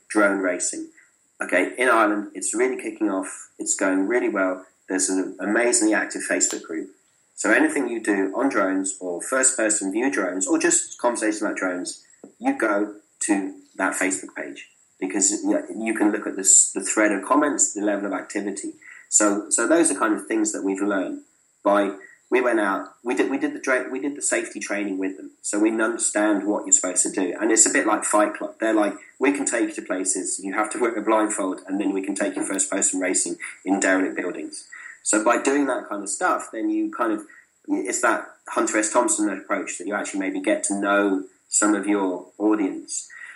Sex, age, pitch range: male, 30-49, 300-335 Hz